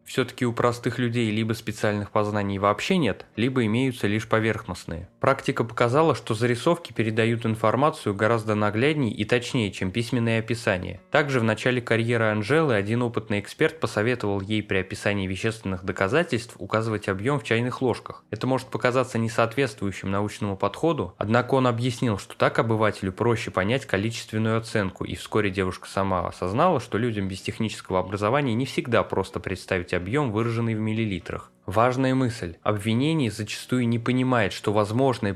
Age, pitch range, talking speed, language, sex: 20-39, 100-125 Hz, 150 wpm, Russian, male